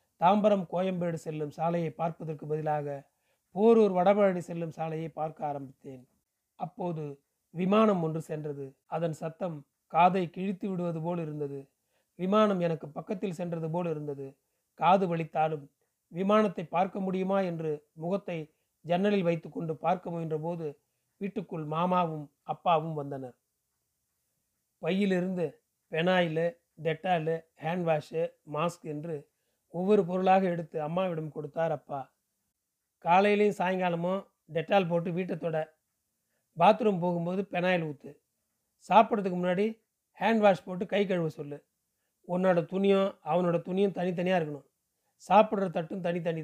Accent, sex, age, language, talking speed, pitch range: native, male, 30-49, Tamil, 105 wpm, 160-190 Hz